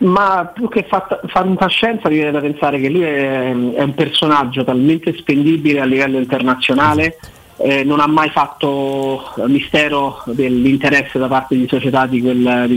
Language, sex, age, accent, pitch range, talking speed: Italian, male, 30-49, native, 130-155 Hz, 155 wpm